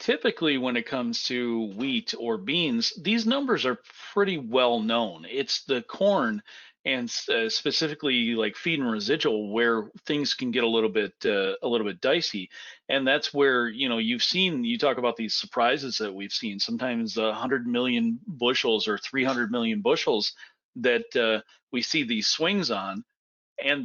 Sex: male